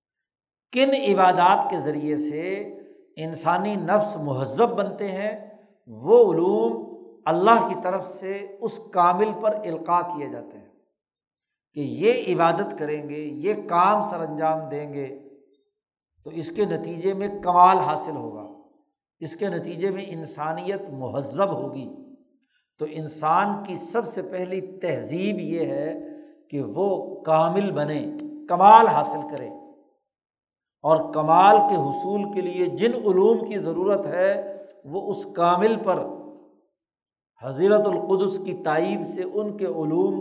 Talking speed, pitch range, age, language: 130 wpm, 160-210 Hz, 60-79, Urdu